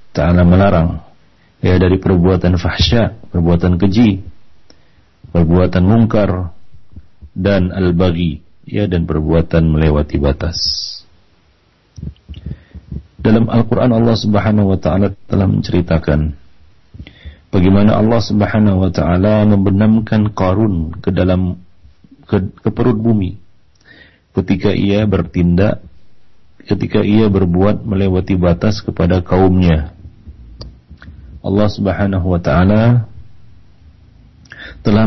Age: 40-59